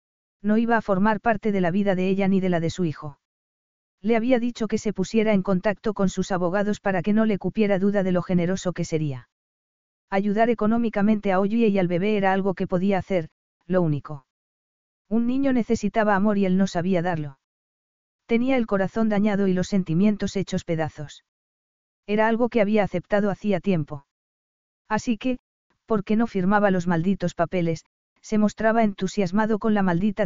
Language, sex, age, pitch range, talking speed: Spanish, female, 40-59, 180-215 Hz, 180 wpm